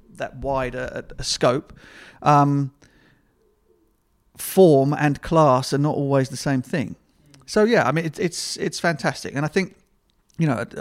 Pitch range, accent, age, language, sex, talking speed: 125-145 Hz, British, 40-59, English, male, 140 wpm